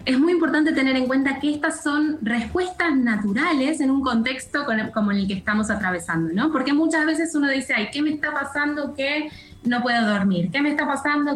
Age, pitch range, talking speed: 10-29, 205-285 Hz, 200 wpm